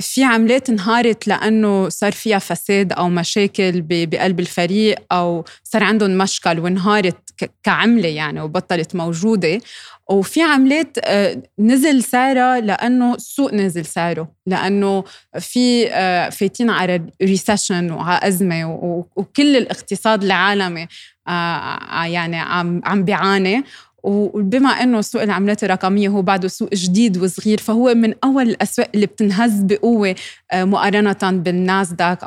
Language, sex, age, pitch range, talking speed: Arabic, female, 20-39, 185-230 Hz, 110 wpm